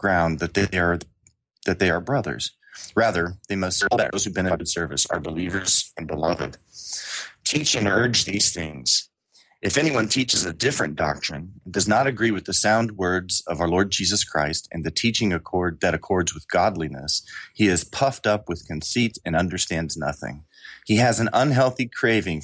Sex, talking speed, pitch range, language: male, 175 wpm, 80-105 Hz, English